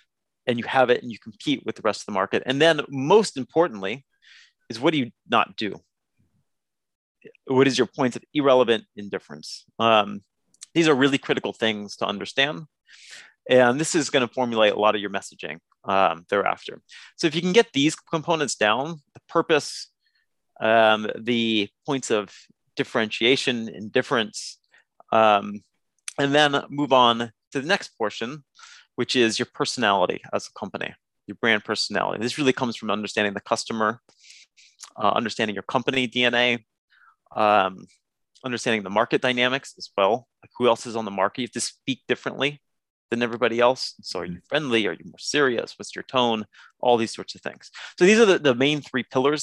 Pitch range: 115-145 Hz